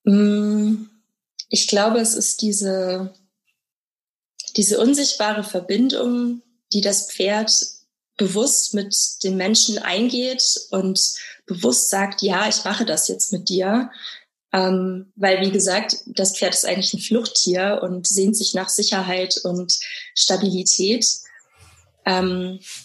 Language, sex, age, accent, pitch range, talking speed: German, female, 20-39, German, 190-220 Hz, 115 wpm